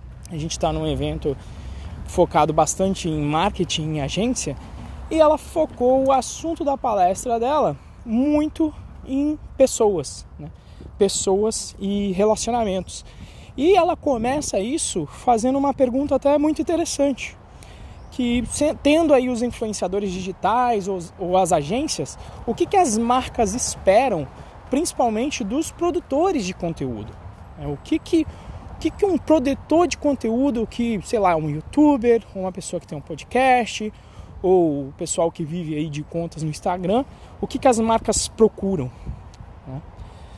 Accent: Brazilian